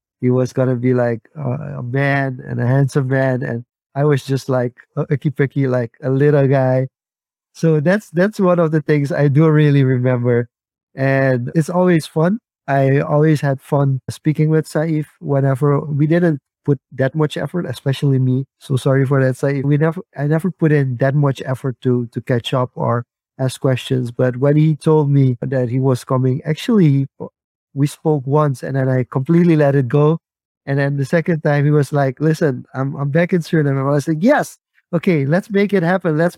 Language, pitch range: English, 135-160 Hz